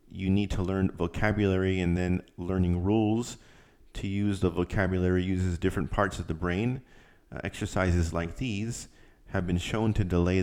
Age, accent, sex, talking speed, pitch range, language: 30-49, American, male, 160 wpm, 85-100 Hz, English